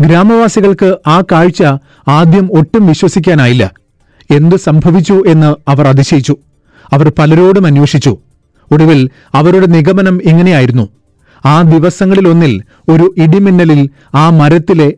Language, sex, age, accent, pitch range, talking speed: Malayalam, male, 40-59, native, 145-180 Hz, 95 wpm